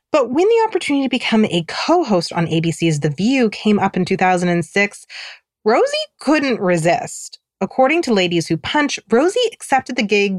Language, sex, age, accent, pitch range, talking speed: English, female, 30-49, American, 170-275 Hz, 160 wpm